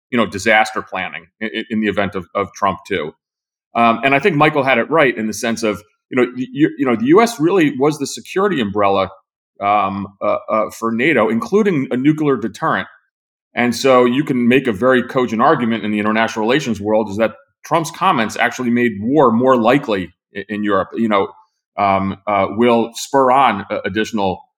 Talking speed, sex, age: 190 wpm, male, 30-49